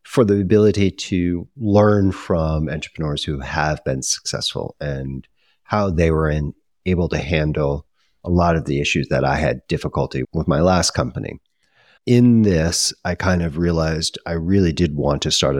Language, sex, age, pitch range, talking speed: English, male, 40-59, 75-95 Hz, 170 wpm